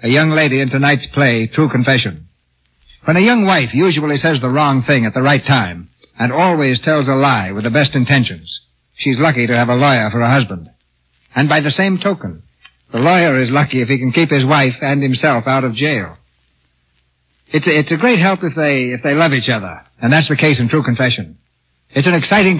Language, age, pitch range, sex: English, 60-79, 115-155 Hz, male